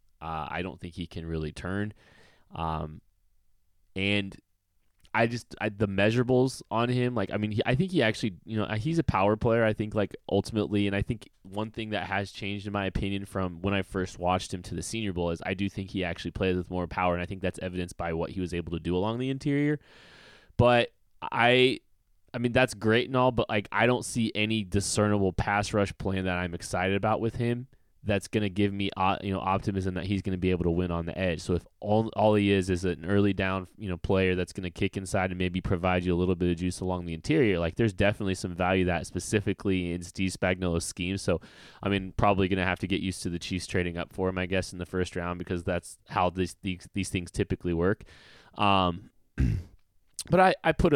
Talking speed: 235 wpm